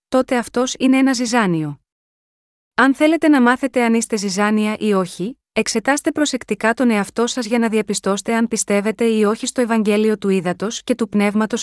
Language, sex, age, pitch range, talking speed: Greek, female, 30-49, 205-250 Hz, 170 wpm